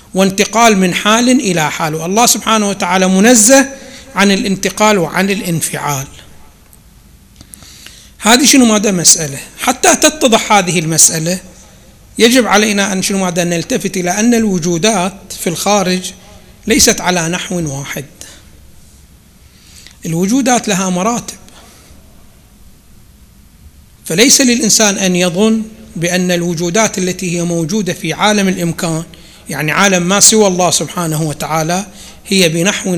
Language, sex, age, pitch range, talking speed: Arabic, male, 60-79, 160-215 Hz, 110 wpm